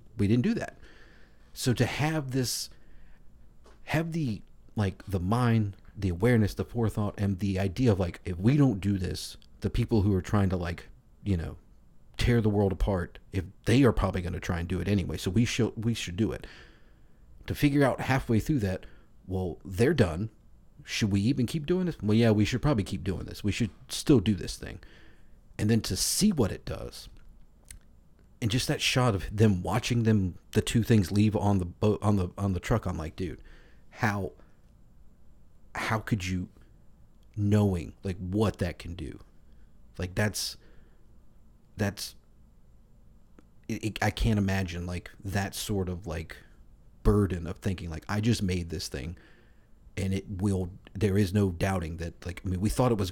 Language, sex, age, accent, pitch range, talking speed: English, male, 40-59, American, 90-110 Hz, 185 wpm